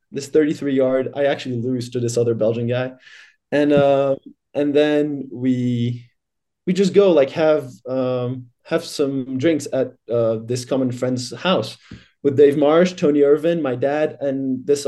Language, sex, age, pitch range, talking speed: English, male, 20-39, 115-145 Hz, 160 wpm